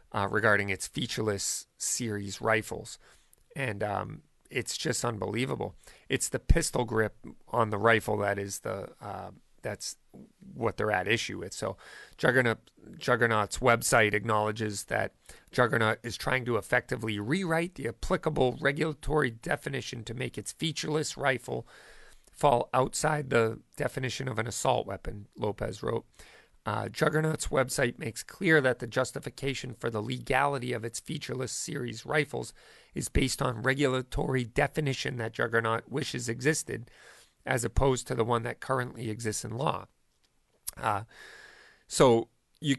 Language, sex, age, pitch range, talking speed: English, male, 40-59, 110-140 Hz, 135 wpm